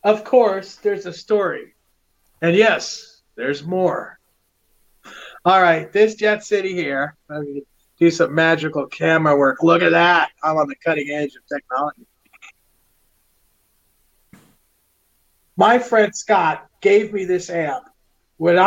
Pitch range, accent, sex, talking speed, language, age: 145-200 Hz, American, male, 130 wpm, English, 40-59